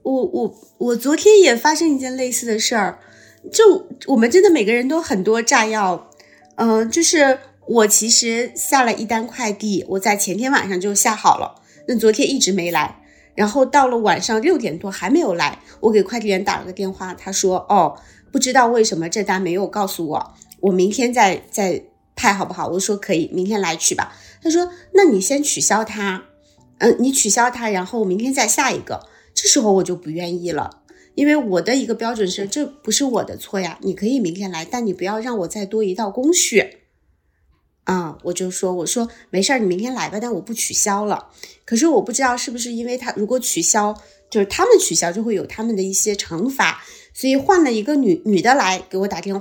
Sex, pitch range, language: female, 190-255 Hz, Chinese